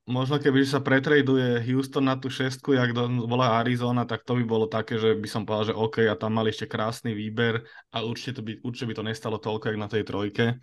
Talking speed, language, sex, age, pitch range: 235 wpm, Slovak, male, 20-39, 110-130 Hz